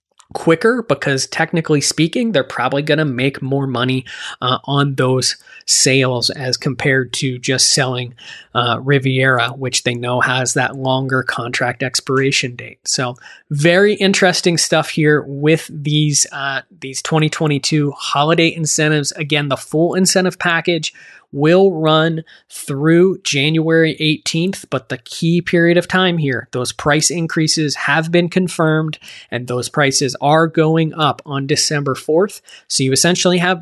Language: English